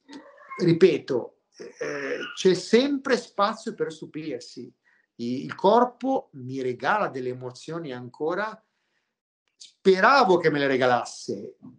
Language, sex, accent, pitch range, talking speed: Italian, male, native, 135-210 Hz, 95 wpm